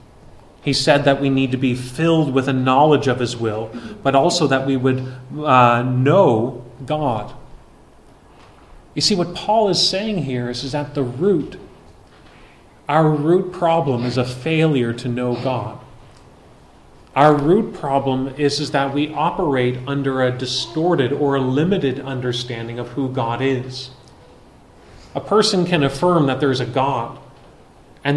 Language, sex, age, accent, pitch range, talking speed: English, male, 30-49, American, 125-155 Hz, 155 wpm